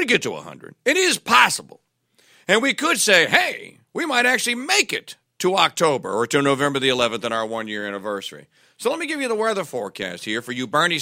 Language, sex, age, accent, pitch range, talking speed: English, male, 50-69, American, 135-195 Hz, 210 wpm